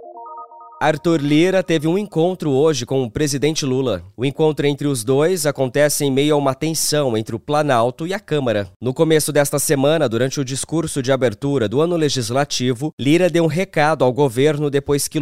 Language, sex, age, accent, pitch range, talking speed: English, male, 20-39, Brazilian, 130-155 Hz, 185 wpm